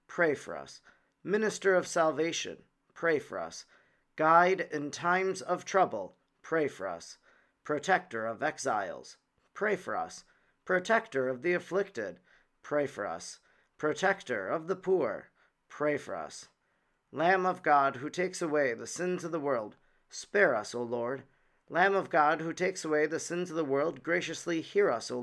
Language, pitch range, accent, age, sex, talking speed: English, 150-180 Hz, American, 40-59, male, 160 wpm